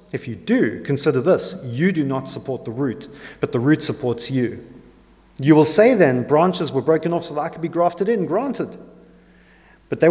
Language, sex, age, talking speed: English, male, 40-59, 200 wpm